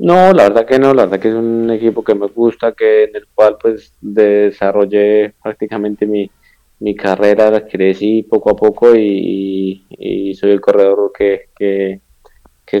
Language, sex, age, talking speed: Spanish, male, 20-39, 170 wpm